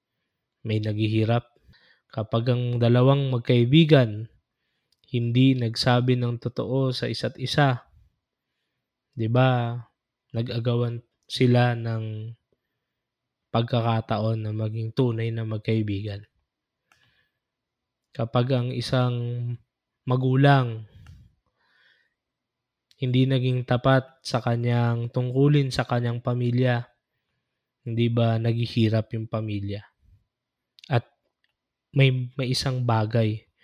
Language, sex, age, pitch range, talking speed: Filipino, male, 20-39, 115-130 Hz, 80 wpm